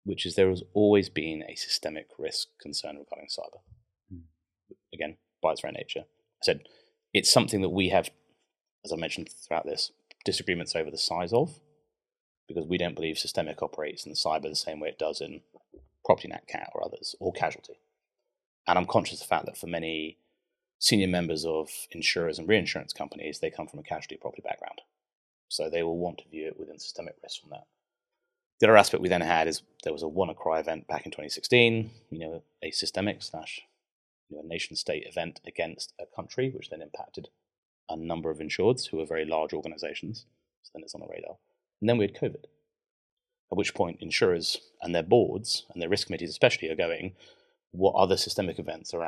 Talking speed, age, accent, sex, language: 195 wpm, 30-49, British, male, English